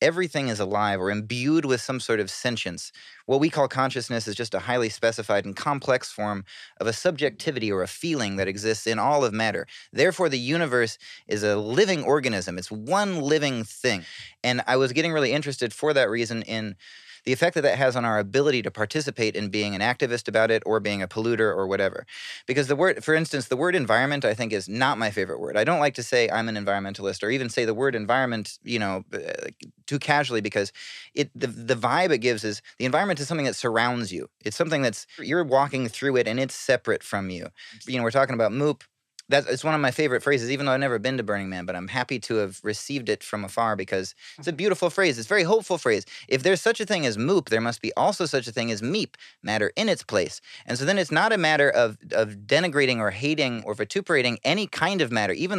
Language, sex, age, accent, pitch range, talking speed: English, male, 30-49, American, 110-145 Hz, 230 wpm